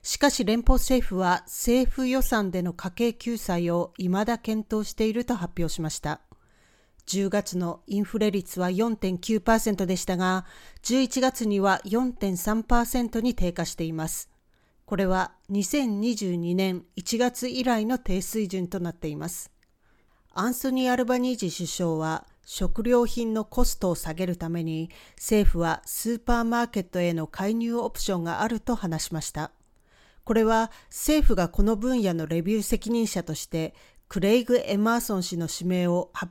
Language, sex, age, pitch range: Japanese, female, 40-59, 180-235 Hz